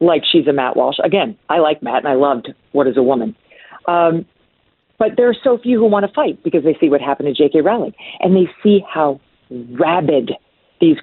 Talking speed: 220 wpm